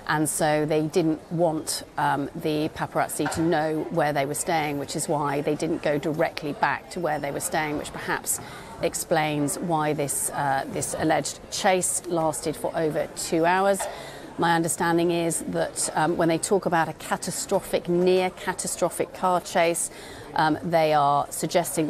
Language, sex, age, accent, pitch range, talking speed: English, female, 40-59, British, 155-180 Hz, 160 wpm